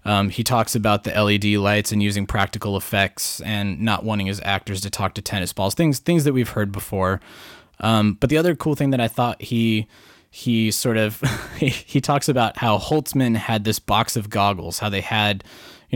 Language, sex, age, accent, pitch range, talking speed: English, male, 20-39, American, 100-115 Hz, 205 wpm